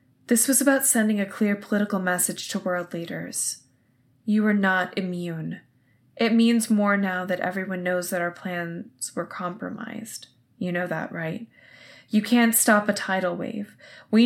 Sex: female